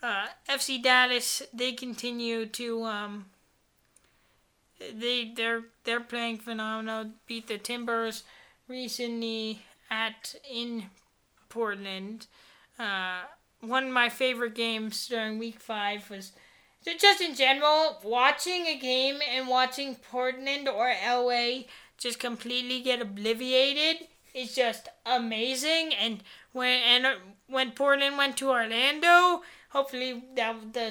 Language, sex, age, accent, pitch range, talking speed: English, female, 20-39, American, 225-280 Hz, 115 wpm